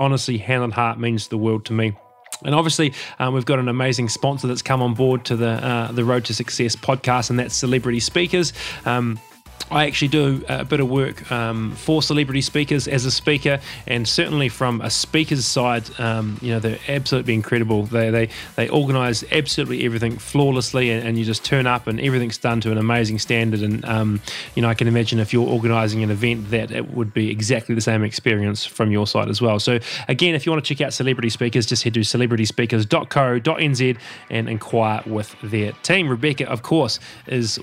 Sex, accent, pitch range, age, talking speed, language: male, Australian, 115-150 Hz, 20-39, 205 wpm, English